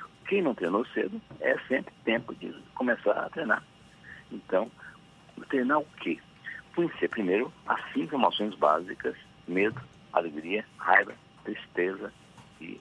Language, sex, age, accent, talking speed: Portuguese, male, 60-79, Brazilian, 120 wpm